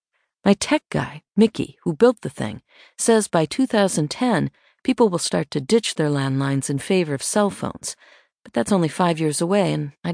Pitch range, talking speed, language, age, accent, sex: 155-225 Hz, 185 wpm, English, 50-69, American, female